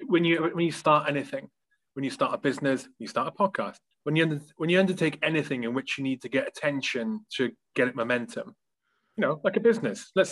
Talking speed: 220 wpm